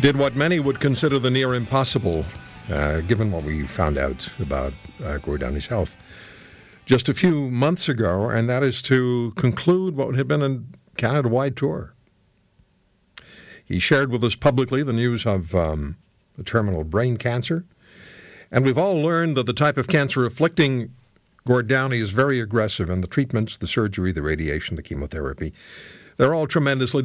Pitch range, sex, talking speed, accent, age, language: 90-135 Hz, male, 165 wpm, American, 60-79, English